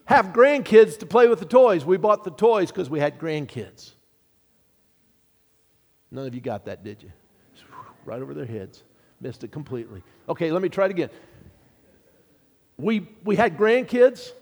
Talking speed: 160 wpm